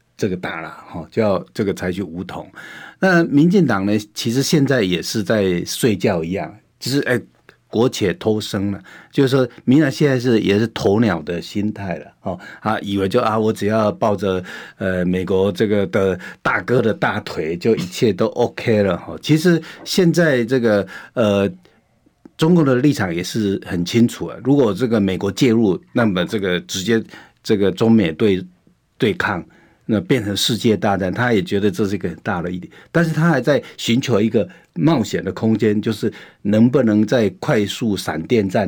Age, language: 50-69, Chinese